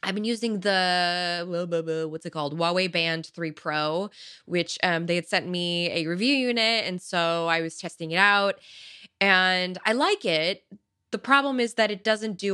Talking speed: 180 wpm